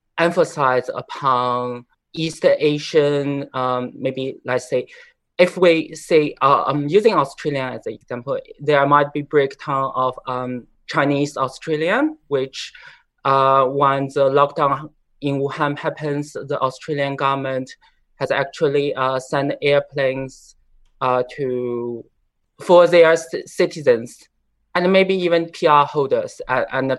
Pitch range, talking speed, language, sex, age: 135-180 Hz, 120 wpm, English, male, 20-39